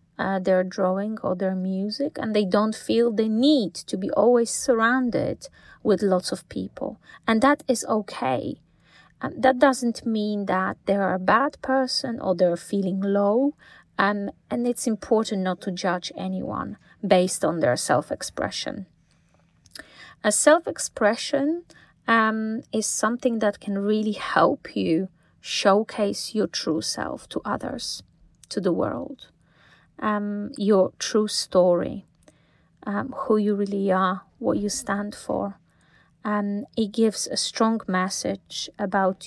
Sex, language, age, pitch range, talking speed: female, English, 30-49, 190-230 Hz, 135 wpm